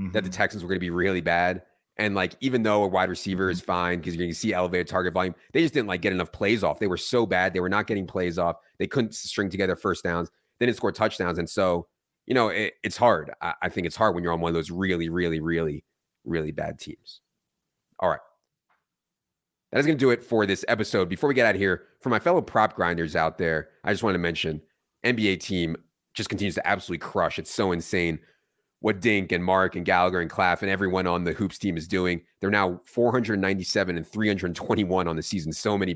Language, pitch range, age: English, 85-105 Hz, 30-49